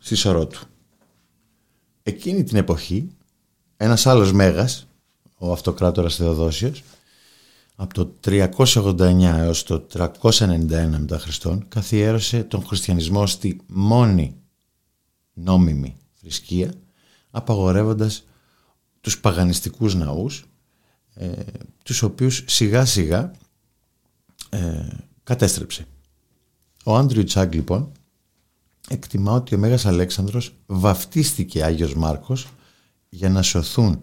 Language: Greek